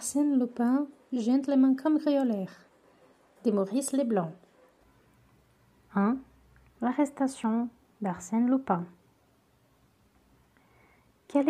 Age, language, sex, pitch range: 30-49, Portuguese, female, 210-255 Hz